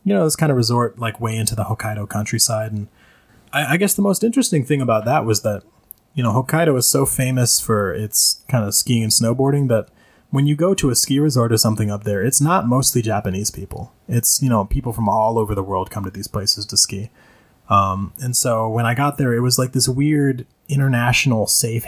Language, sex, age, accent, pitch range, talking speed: English, male, 20-39, American, 105-135 Hz, 230 wpm